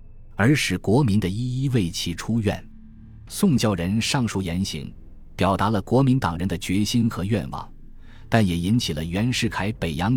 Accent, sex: native, male